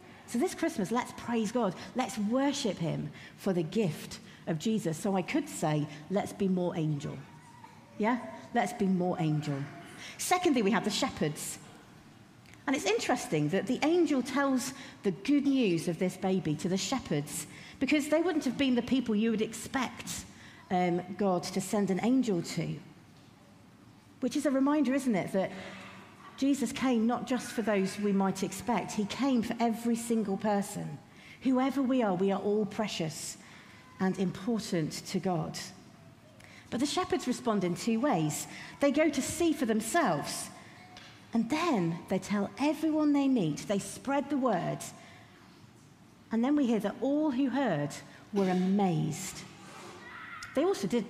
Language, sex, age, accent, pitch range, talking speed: English, female, 50-69, British, 185-260 Hz, 160 wpm